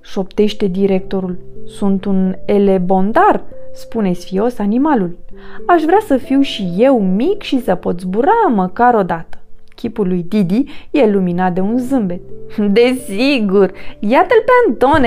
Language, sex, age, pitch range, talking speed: Romanian, female, 20-39, 185-250 Hz, 145 wpm